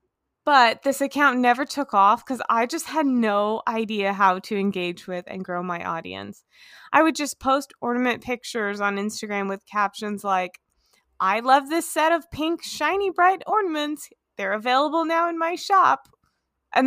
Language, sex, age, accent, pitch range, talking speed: English, female, 20-39, American, 190-265 Hz, 165 wpm